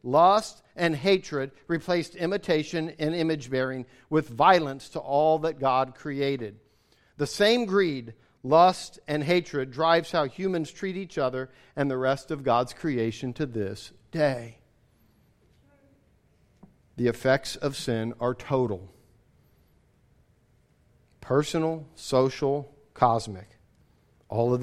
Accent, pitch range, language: American, 125-165 Hz, English